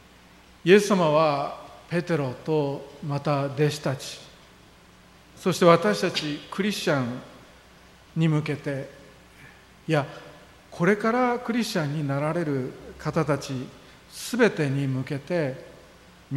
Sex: male